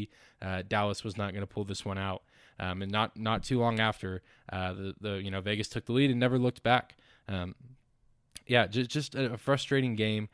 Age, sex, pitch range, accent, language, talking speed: 20-39, male, 105-125 Hz, American, English, 215 wpm